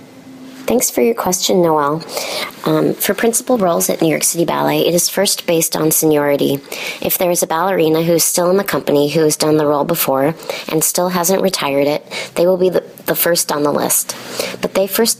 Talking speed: 210 wpm